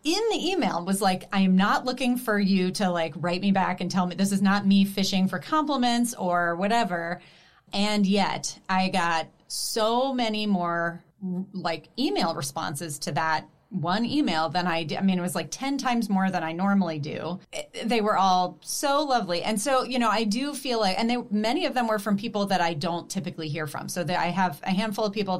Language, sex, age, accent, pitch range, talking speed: English, female, 30-49, American, 165-205 Hz, 215 wpm